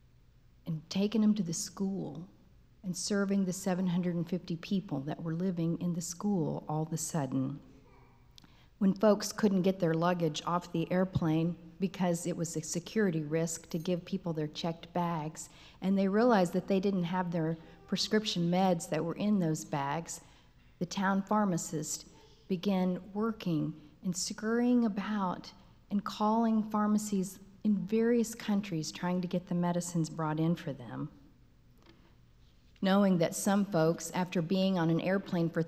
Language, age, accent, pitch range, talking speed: English, 50-69, American, 165-200 Hz, 150 wpm